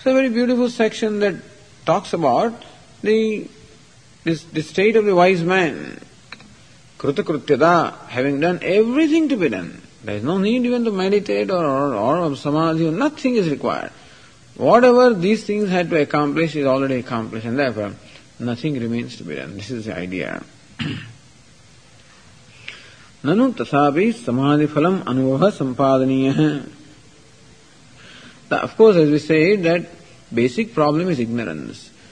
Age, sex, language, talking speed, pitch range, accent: 50-69, male, English, 135 wpm, 135-185 Hz, Indian